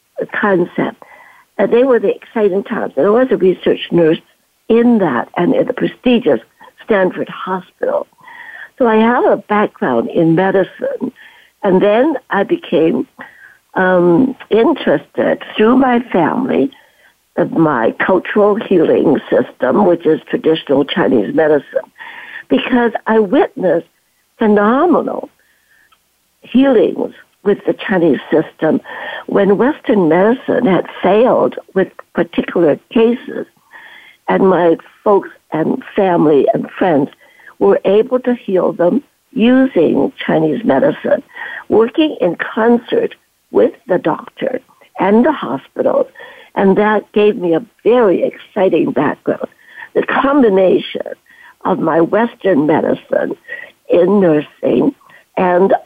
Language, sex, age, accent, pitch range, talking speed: English, female, 60-79, American, 190-305 Hz, 110 wpm